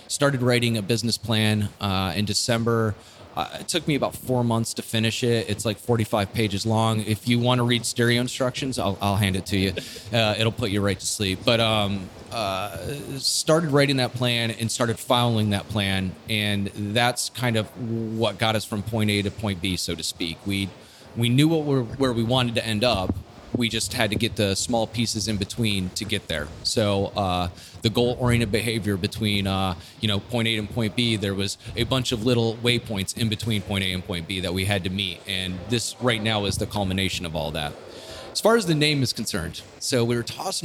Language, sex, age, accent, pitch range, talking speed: English, male, 30-49, American, 100-120 Hz, 220 wpm